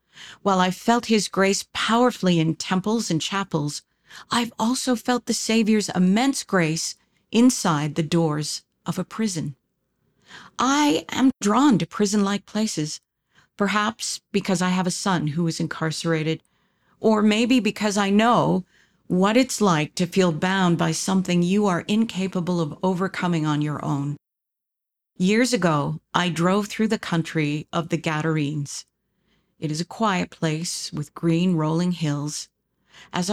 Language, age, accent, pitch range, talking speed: English, 50-69, American, 160-205 Hz, 140 wpm